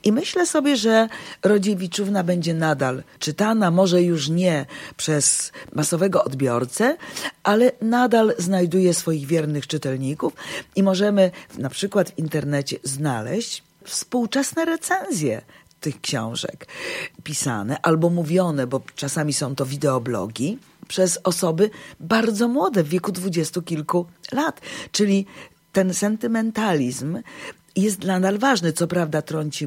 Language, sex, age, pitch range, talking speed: Polish, female, 40-59, 155-215 Hz, 115 wpm